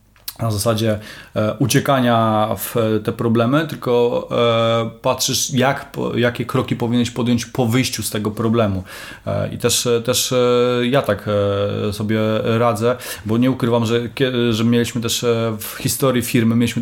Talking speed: 130 wpm